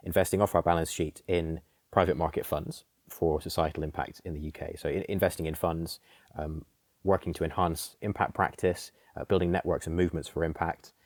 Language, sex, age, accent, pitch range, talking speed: English, male, 30-49, British, 80-90 Hz, 175 wpm